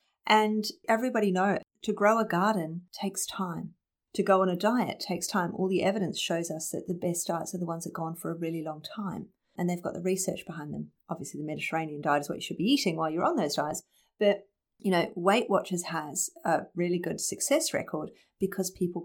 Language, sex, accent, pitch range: English, female, Australian, 165-210 Hz